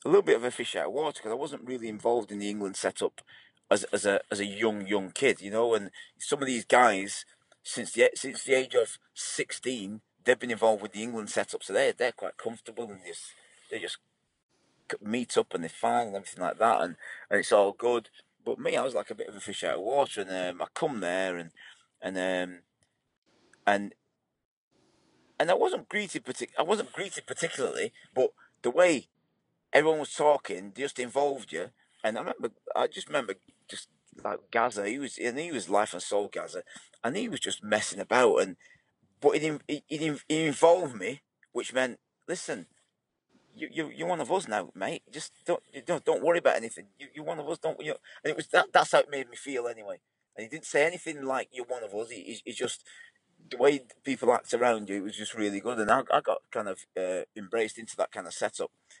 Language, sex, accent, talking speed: English, male, British, 220 wpm